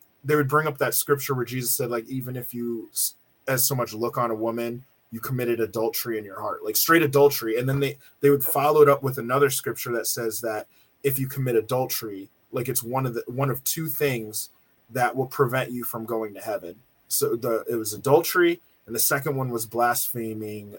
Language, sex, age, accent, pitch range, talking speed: English, male, 20-39, American, 120-150 Hz, 215 wpm